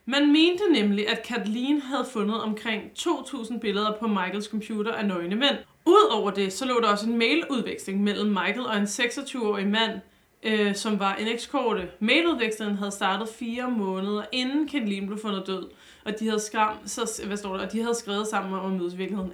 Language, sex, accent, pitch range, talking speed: Danish, female, native, 205-250 Hz, 185 wpm